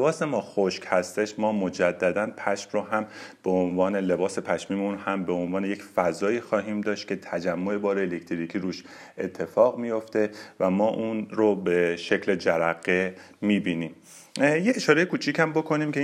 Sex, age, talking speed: male, 40-59, 155 wpm